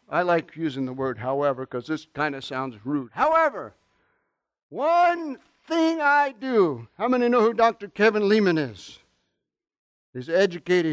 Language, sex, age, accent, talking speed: English, male, 60-79, American, 150 wpm